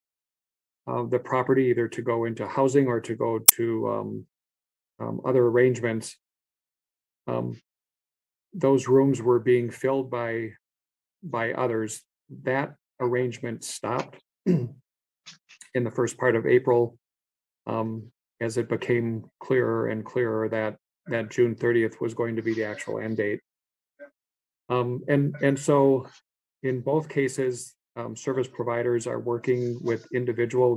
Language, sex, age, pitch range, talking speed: English, male, 40-59, 110-125 Hz, 130 wpm